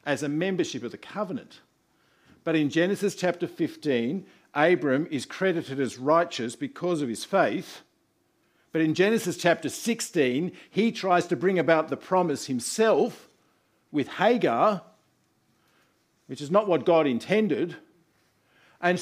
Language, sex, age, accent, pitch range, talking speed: English, male, 50-69, Australian, 150-195 Hz, 135 wpm